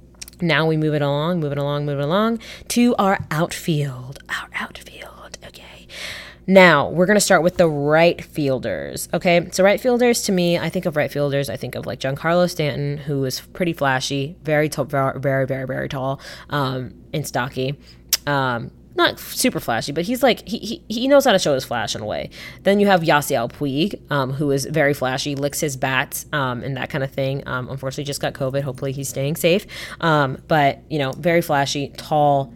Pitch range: 135-180 Hz